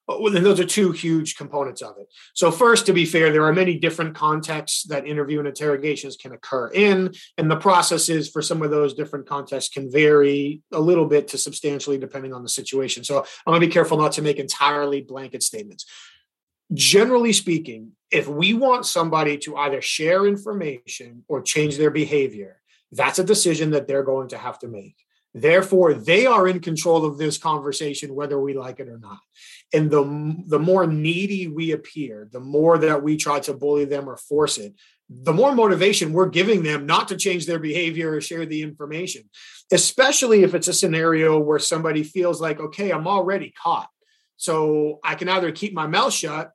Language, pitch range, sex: English, 145-180 Hz, male